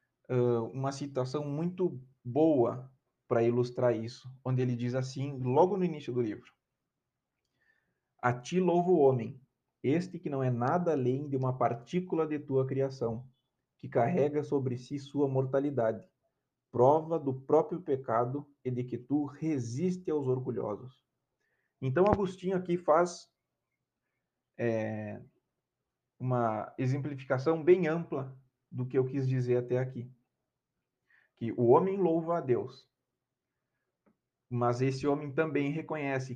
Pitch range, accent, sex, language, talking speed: 125-150 Hz, Brazilian, male, Portuguese, 125 wpm